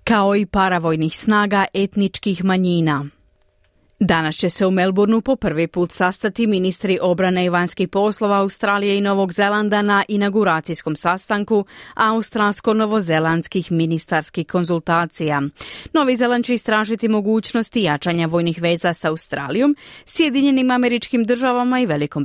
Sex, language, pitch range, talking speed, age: female, Croatian, 170-230 Hz, 120 wpm, 30-49